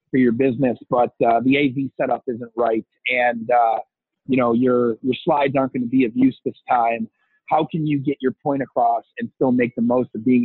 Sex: male